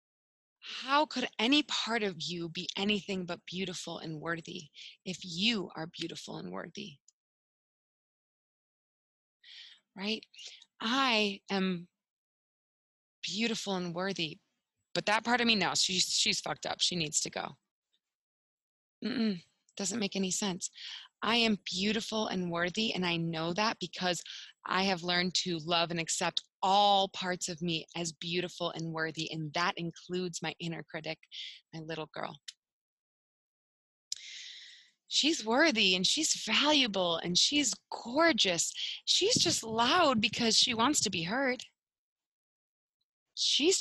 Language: English